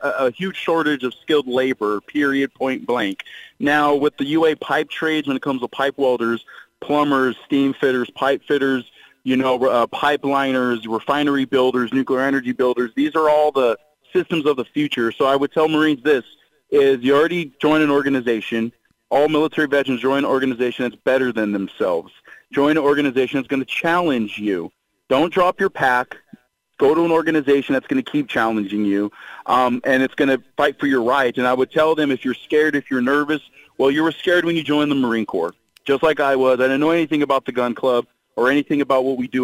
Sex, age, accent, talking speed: male, 40-59, American, 205 wpm